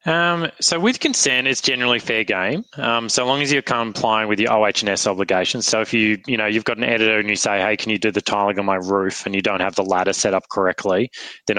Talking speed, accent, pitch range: 255 wpm, Australian, 100-115 Hz